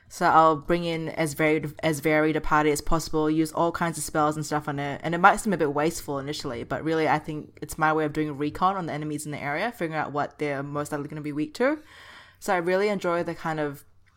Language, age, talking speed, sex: English, 20-39, 270 wpm, female